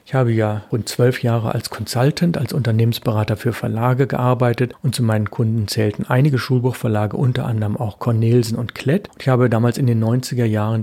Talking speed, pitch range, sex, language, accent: 185 wpm, 110-130 Hz, male, German, German